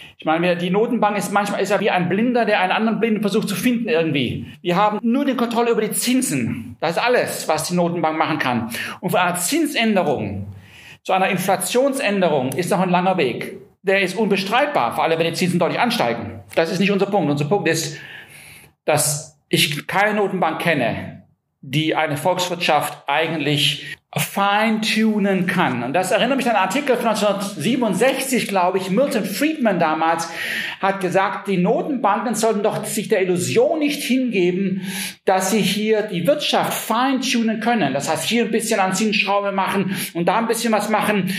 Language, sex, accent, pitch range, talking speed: German, male, German, 170-220 Hz, 175 wpm